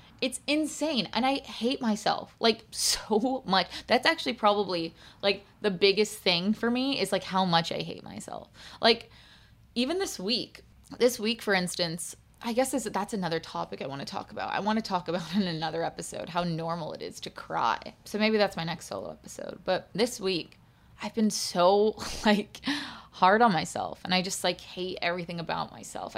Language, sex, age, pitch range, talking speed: English, female, 20-39, 180-235 Hz, 190 wpm